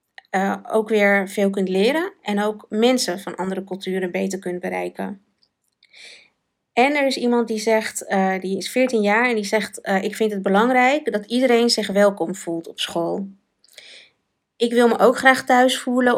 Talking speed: 180 wpm